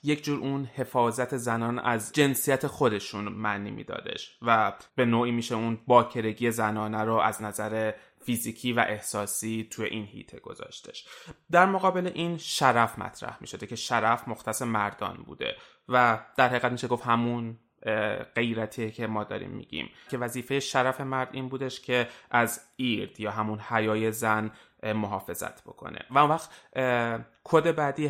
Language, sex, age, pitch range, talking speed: Persian, male, 20-39, 110-130 Hz, 145 wpm